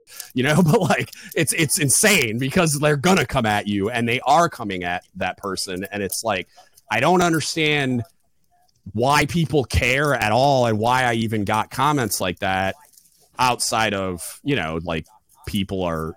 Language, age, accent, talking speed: English, 30-49, American, 170 wpm